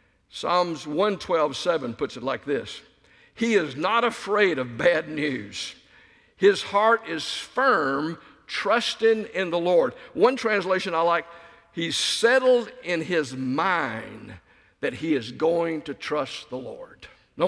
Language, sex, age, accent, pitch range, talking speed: English, male, 60-79, American, 160-230 Hz, 135 wpm